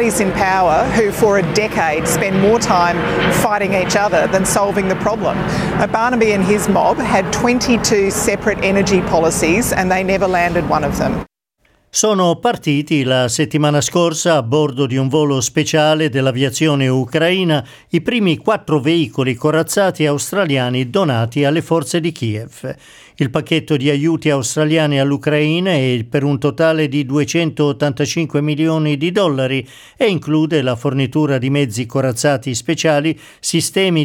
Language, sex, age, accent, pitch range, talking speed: Italian, male, 50-69, native, 135-175 Hz, 140 wpm